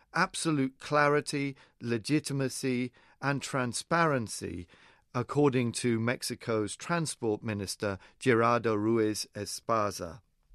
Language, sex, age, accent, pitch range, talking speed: English, male, 40-59, British, 110-140 Hz, 75 wpm